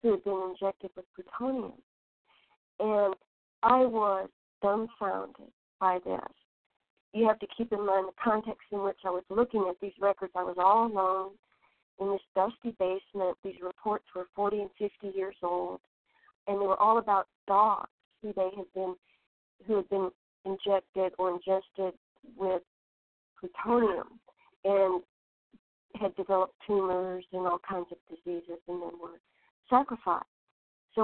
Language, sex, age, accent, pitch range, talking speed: English, female, 40-59, American, 185-220 Hz, 145 wpm